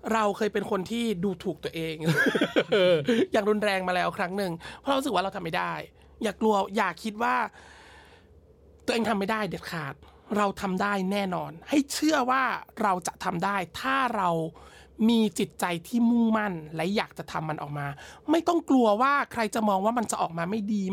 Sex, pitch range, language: male, 190-245 Hz, Thai